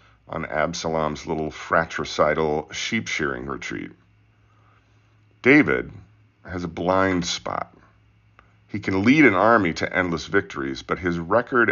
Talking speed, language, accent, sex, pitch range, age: 115 wpm, English, American, male, 90-110 Hz, 40-59